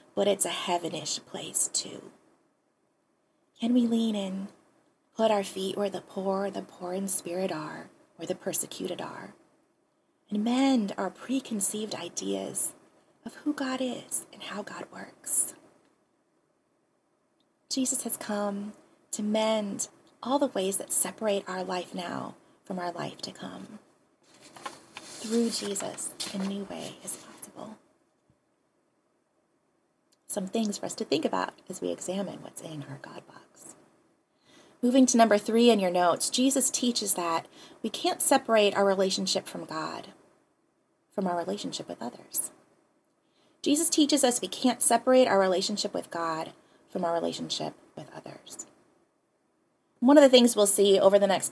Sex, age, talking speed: female, 20-39, 145 wpm